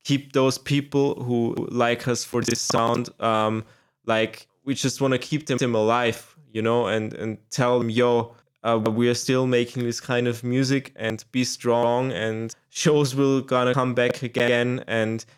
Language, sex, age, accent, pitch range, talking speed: English, male, 20-39, German, 120-140 Hz, 175 wpm